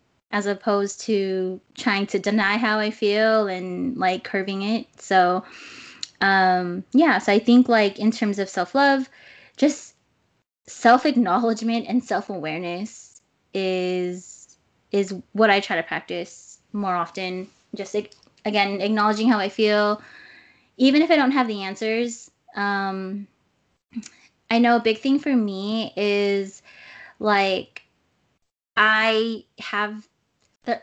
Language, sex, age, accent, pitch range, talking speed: English, female, 20-39, American, 195-230 Hz, 125 wpm